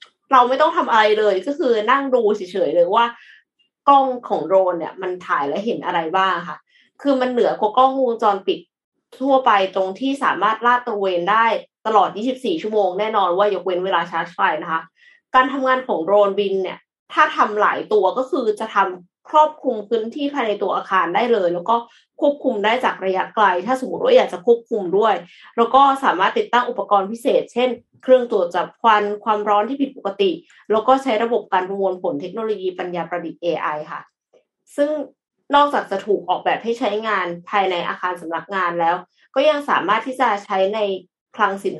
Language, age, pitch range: Thai, 20-39, 190-260 Hz